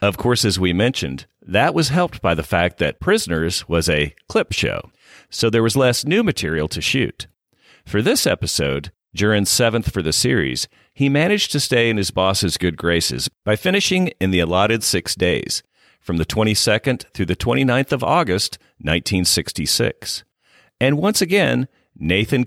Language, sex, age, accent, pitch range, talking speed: English, male, 50-69, American, 85-125 Hz, 165 wpm